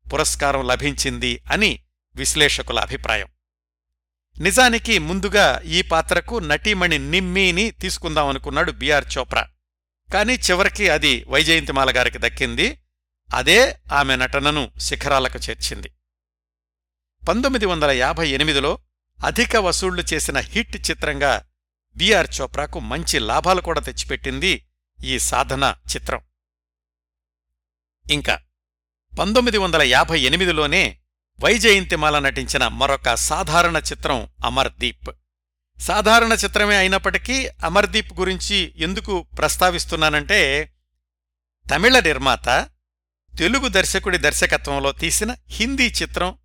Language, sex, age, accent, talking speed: Telugu, male, 60-79, native, 90 wpm